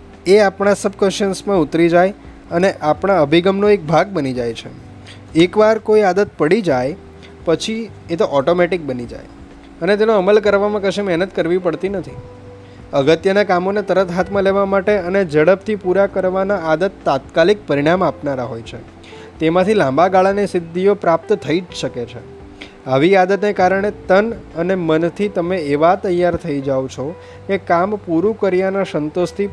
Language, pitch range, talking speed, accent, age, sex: Gujarati, 135-195 Hz, 155 wpm, native, 20-39, male